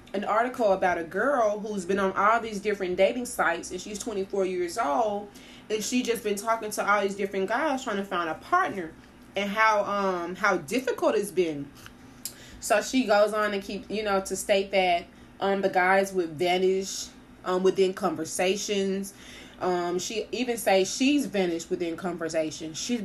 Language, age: English, 20-39